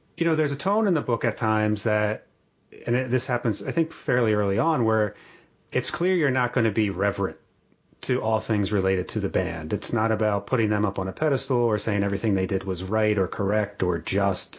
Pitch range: 100-120 Hz